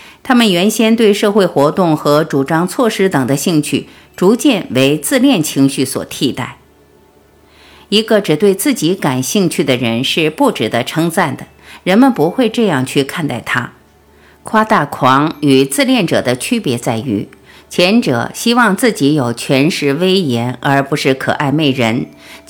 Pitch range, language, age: 125-200 Hz, Chinese, 50-69